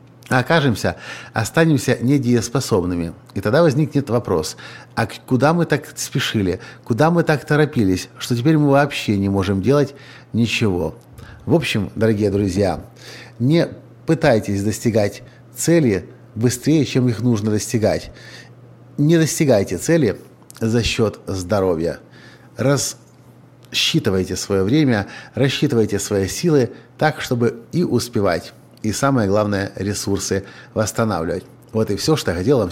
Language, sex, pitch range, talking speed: Russian, male, 105-140 Hz, 120 wpm